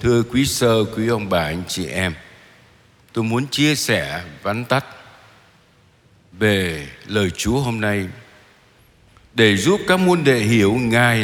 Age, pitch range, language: 60-79, 105-135 Hz, Vietnamese